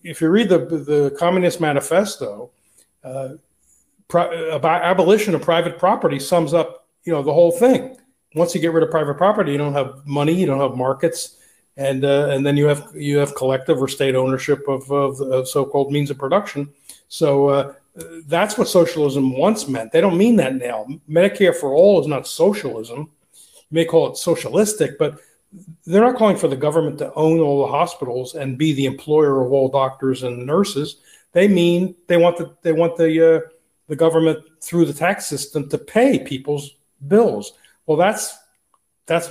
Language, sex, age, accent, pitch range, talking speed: English, male, 40-59, American, 140-175 Hz, 185 wpm